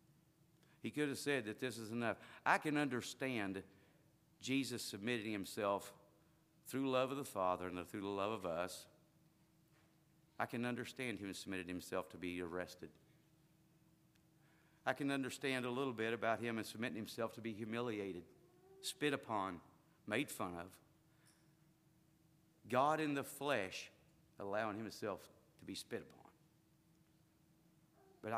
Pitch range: 120-160 Hz